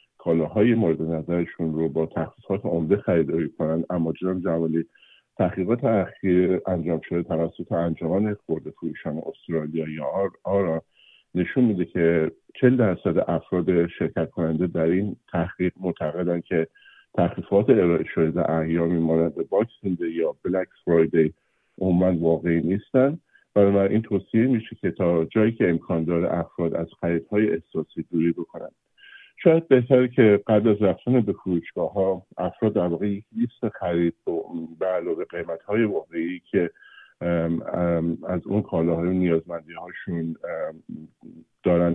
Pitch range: 85-100 Hz